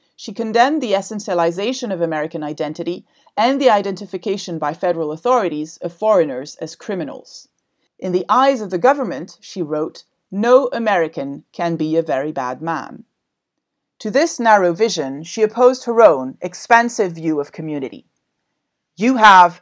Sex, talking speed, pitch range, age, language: female, 145 wpm, 165-225 Hz, 30-49, English